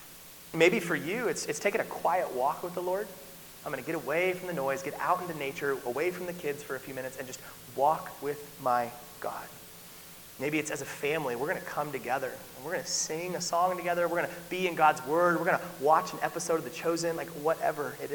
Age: 30-49